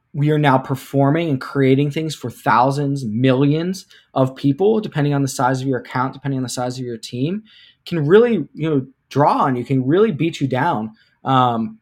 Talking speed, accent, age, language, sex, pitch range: 200 wpm, American, 20-39, English, male, 130-160 Hz